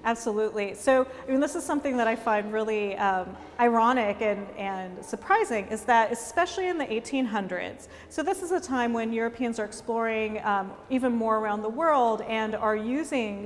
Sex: female